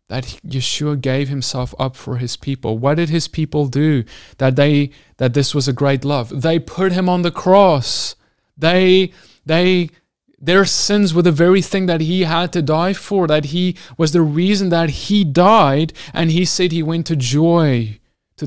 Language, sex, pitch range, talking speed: English, male, 130-170 Hz, 185 wpm